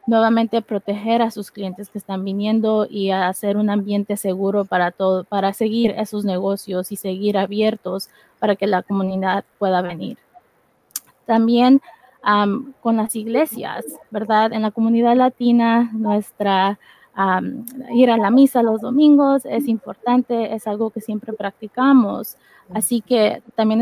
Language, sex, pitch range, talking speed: English, female, 205-235 Hz, 145 wpm